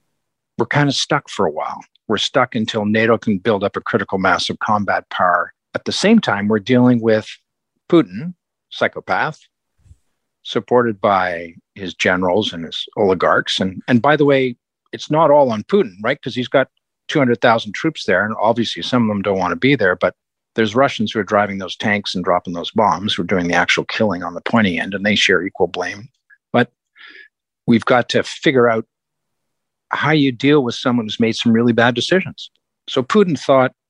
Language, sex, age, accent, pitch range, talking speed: English, male, 50-69, American, 105-140 Hz, 195 wpm